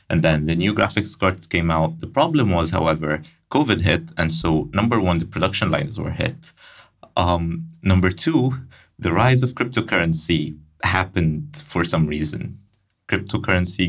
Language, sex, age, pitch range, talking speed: English, male, 30-49, 80-100 Hz, 150 wpm